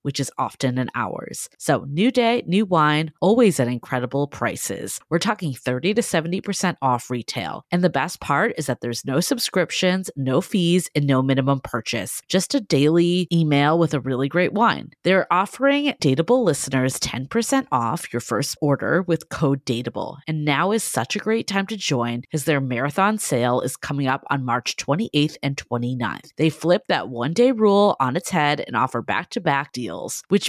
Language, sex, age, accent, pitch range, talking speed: English, female, 30-49, American, 135-190 Hz, 180 wpm